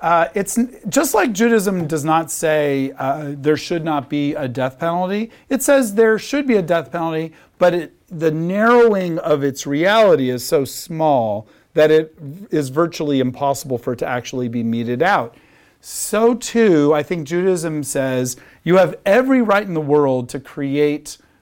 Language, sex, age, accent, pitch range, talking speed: English, male, 40-59, American, 130-180 Hz, 170 wpm